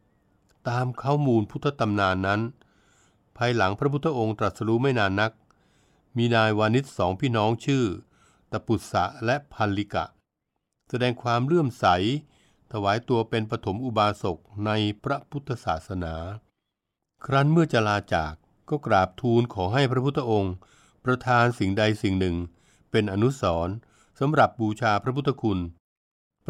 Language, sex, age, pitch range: Thai, male, 60-79, 100-125 Hz